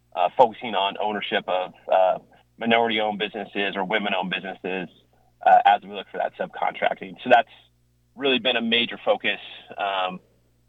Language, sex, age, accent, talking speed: English, male, 30-49, American, 145 wpm